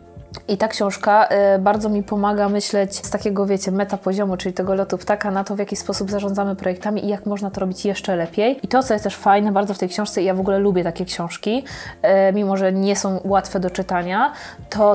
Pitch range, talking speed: 195-215 Hz, 230 wpm